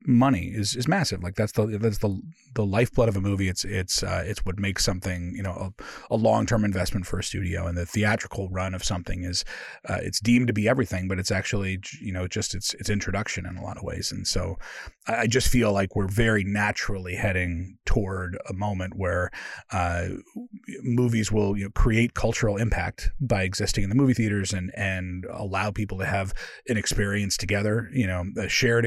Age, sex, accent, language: 30-49, male, American, English